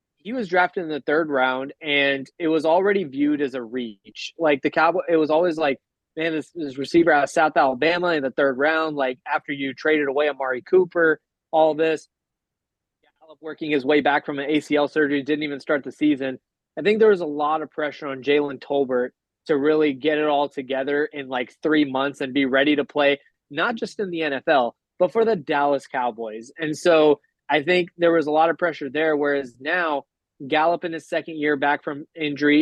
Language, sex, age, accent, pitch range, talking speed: English, male, 20-39, American, 140-160 Hz, 210 wpm